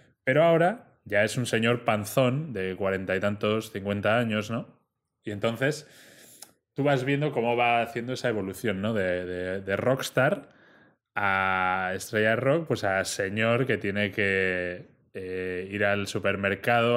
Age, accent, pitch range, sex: 20-39, Spanish, 105-130 Hz, male